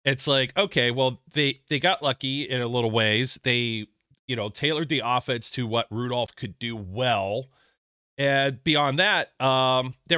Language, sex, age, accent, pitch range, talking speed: English, male, 40-59, American, 115-145 Hz, 170 wpm